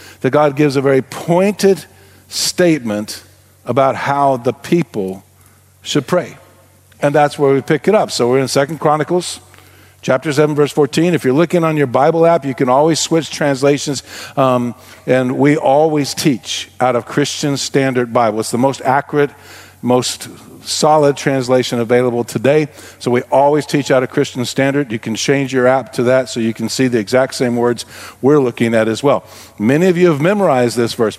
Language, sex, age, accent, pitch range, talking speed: English, male, 50-69, American, 120-155 Hz, 185 wpm